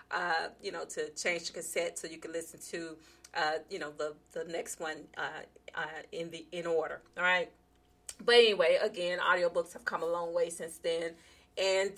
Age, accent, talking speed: 40-59, American, 195 wpm